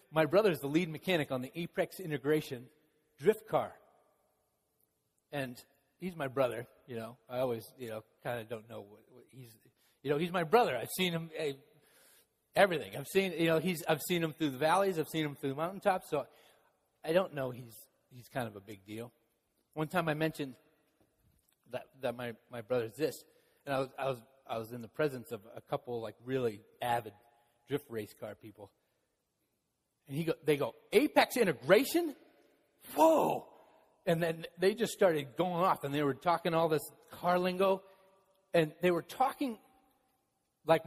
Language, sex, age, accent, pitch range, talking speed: English, male, 30-49, American, 130-180 Hz, 180 wpm